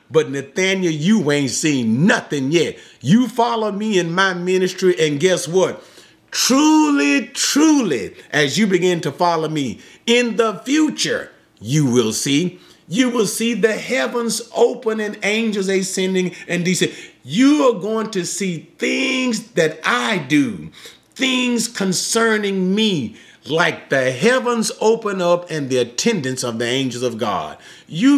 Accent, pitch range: American, 170-235 Hz